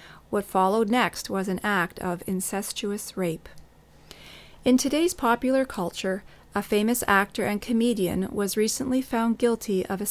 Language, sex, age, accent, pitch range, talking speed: English, female, 40-59, American, 190-235 Hz, 140 wpm